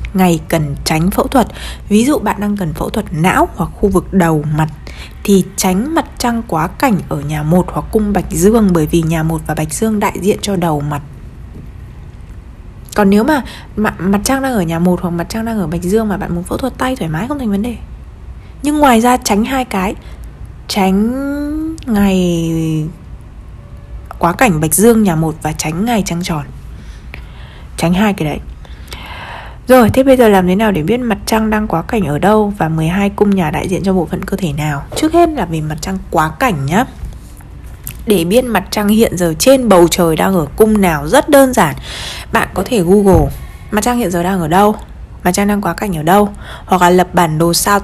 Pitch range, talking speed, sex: 165-220 Hz, 215 wpm, female